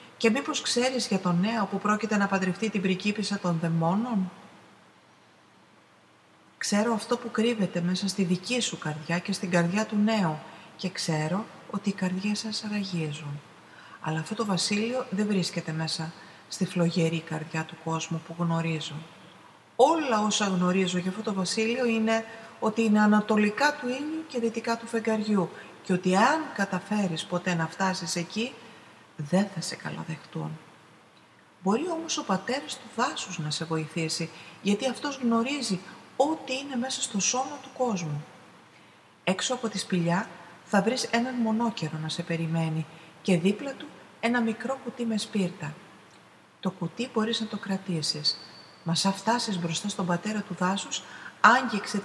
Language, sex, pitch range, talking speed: Greek, female, 170-230 Hz, 150 wpm